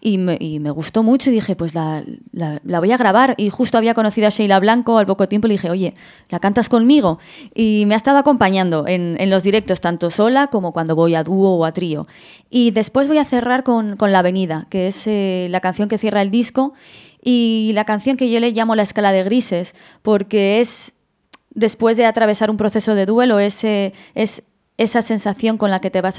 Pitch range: 195-235 Hz